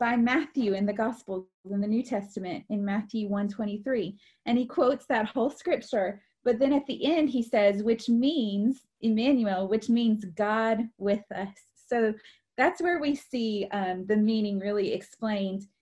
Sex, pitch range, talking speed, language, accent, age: female, 205-260 Hz, 170 wpm, English, American, 30-49